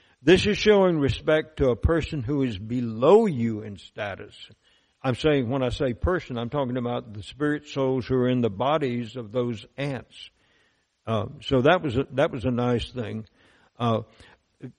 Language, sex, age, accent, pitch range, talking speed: English, male, 60-79, American, 115-150 Hz, 180 wpm